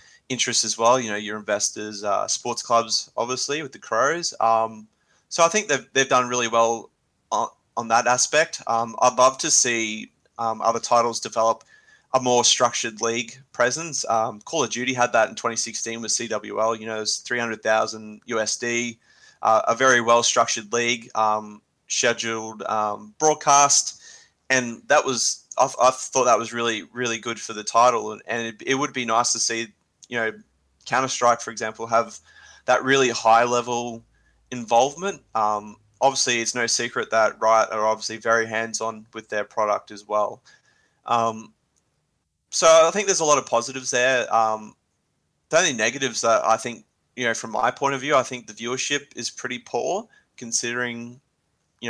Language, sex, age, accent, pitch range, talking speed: English, male, 20-39, Australian, 110-125 Hz, 175 wpm